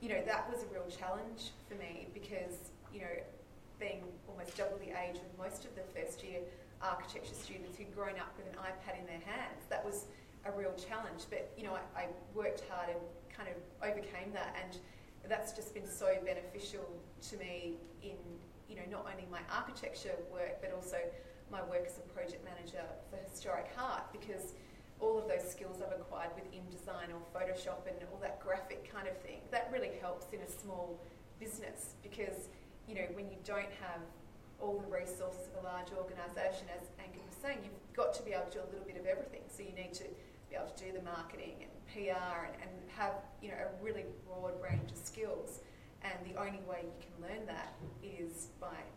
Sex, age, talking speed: female, 30-49, 205 wpm